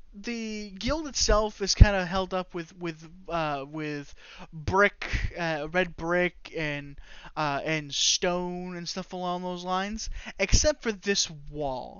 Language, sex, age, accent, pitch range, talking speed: English, male, 20-39, American, 150-185 Hz, 145 wpm